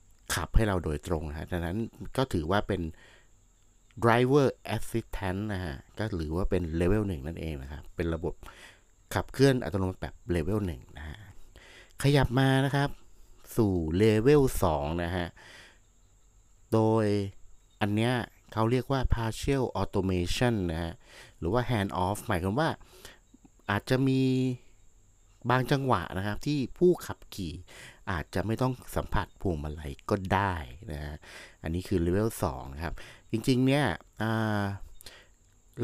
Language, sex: Thai, male